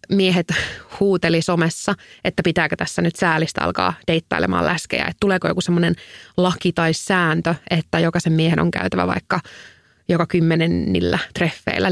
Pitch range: 165-190 Hz